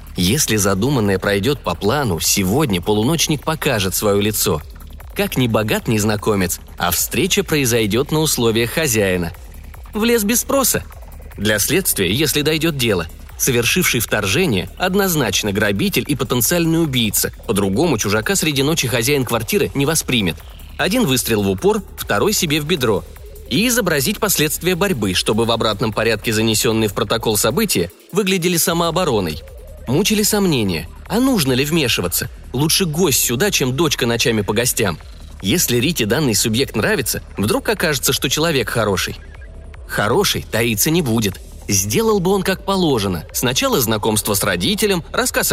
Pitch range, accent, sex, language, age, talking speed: 100-165 Hz, native, male, Russian, 30-49, 135 wpm